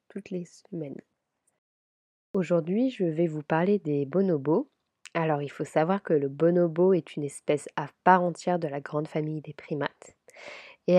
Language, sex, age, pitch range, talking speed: French, female, 20-39, 155-180 Hz, 165 wpm